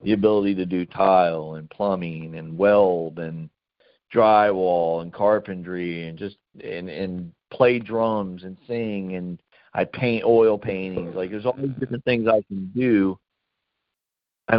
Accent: American